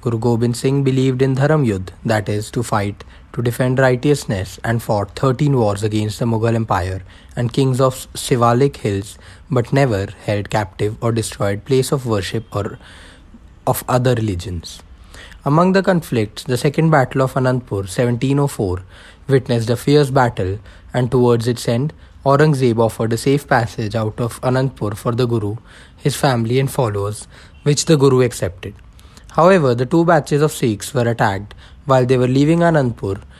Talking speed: 160 wpm